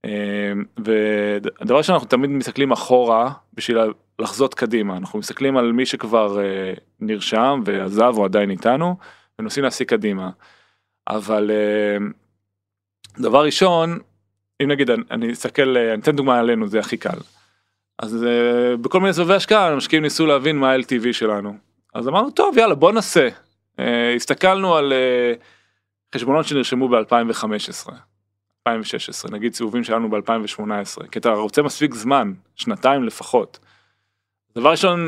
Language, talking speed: Hebrew, 135 wpm